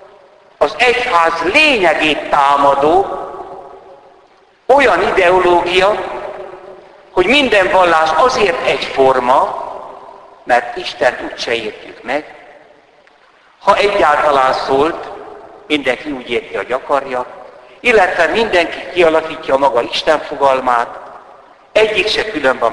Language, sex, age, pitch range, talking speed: Hungarian, male, 60-79, 150-205 Hz, 90 wpm